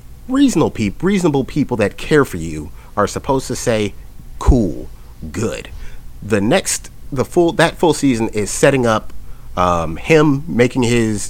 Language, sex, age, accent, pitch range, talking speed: English, male, 30-49, American, 90-125 Hz, 140 wpm